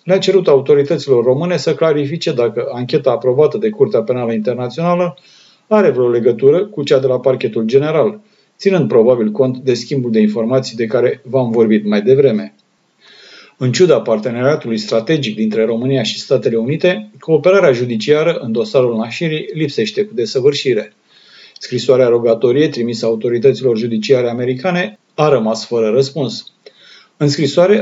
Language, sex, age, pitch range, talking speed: Romanian, male, 40-59, 120-170 Hz, 140 wpm